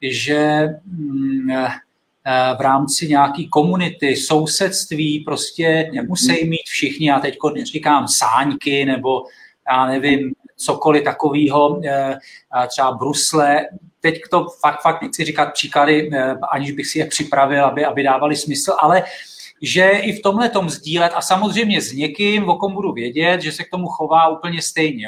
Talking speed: 140 wpm